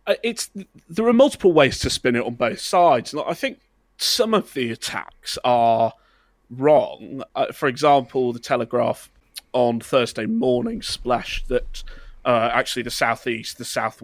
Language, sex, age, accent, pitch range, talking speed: English, male, 30-49, British, 115-135 Hz, 155 wpm